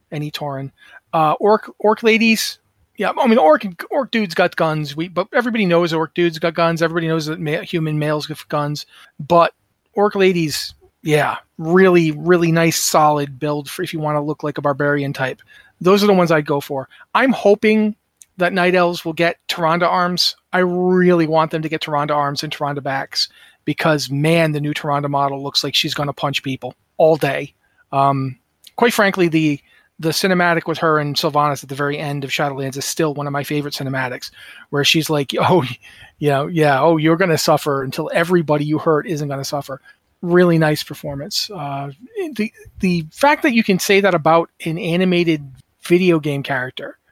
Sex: male